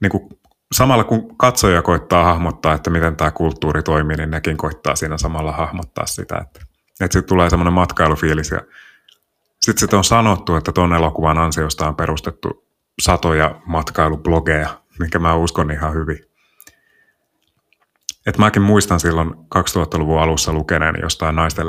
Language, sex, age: Finnish, male, 30-49